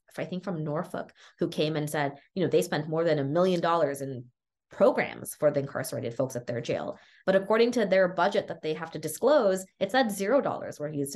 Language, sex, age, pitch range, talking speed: English, female, 20-39, 150-190 Hz, 225 wpm